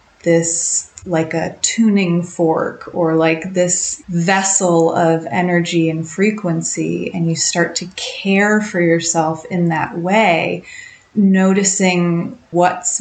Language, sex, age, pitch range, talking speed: English, female, 30-49, 170-195 Hz, 115 wpm